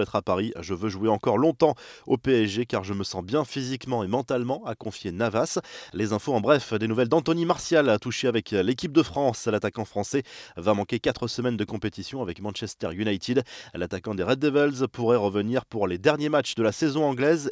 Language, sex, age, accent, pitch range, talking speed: French, male, 20-39, French, 105-140 Hz, 205 wpm